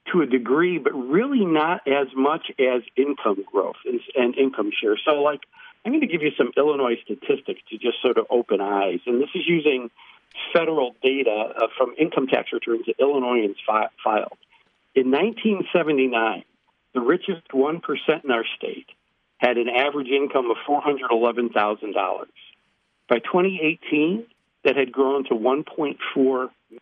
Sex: male